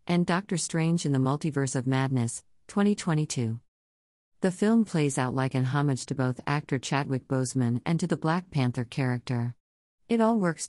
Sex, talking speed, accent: female, 170 wpm, American